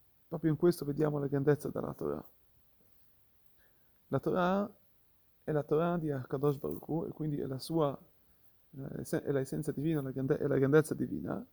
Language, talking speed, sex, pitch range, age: Italian, 150 wpm, male, 135-165 Hz, 30-49